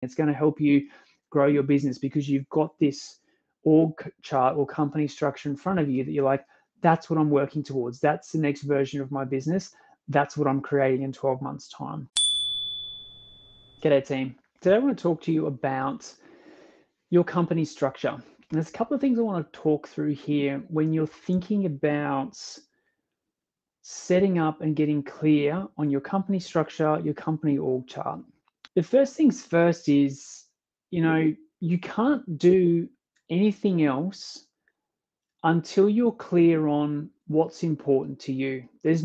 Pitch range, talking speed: 145-170 Hz, 165 wpm